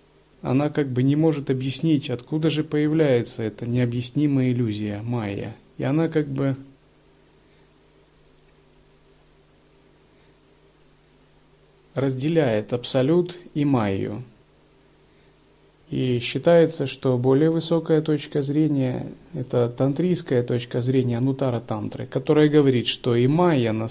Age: 30-49